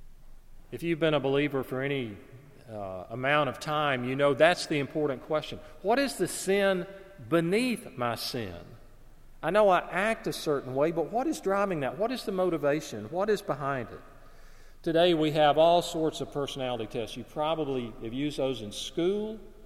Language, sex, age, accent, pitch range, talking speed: English, male, 40-59, American, 130-170 Hz, 180 wpm